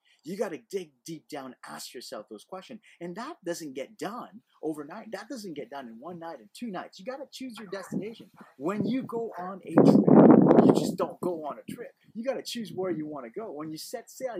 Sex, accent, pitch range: male, American, 150-225 Hz